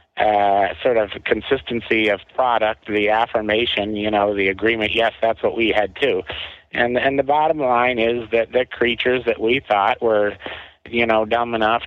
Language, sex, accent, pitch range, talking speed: English, male, American, 105-120 Hz, 175 wpm